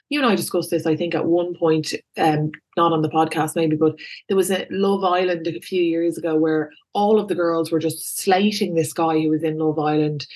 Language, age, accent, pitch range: English, 20-39, Irish, 160-195 Hz